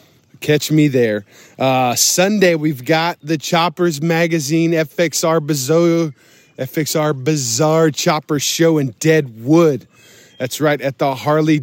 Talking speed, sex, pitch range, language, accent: 120 wpm, male, 130-170 Hz, English, American